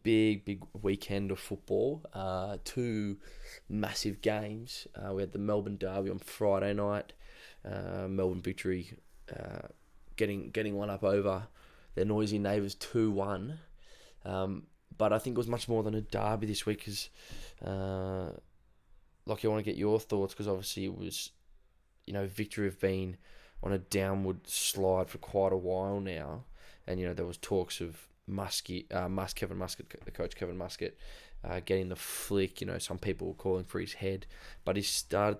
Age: 20-39